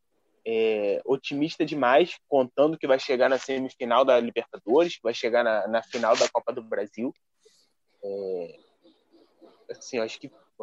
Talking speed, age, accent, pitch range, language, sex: 145 wpm, 20-39, Brazilian, 130-160 Hz, Portuguese, male